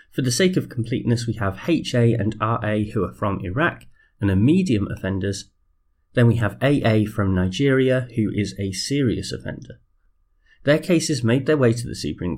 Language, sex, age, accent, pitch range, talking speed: English, male, 30-49, British, 100-140 Hz, 180 wpm